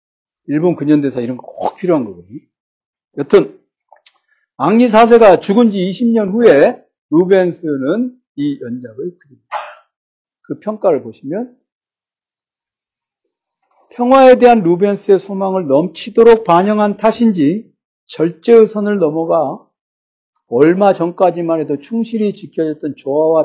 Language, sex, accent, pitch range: Korean, male, native, 165-235 Hz